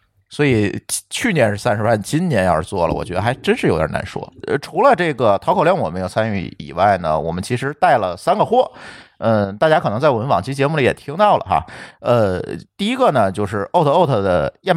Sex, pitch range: male, 95-125 Hz